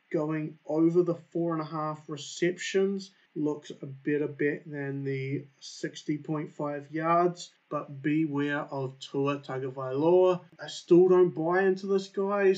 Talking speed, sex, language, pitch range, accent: 135 wpm, male, English, 140-170 Hz, Australian